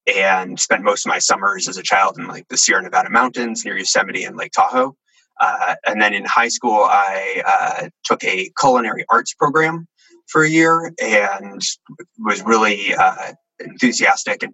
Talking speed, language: 175 wpm, English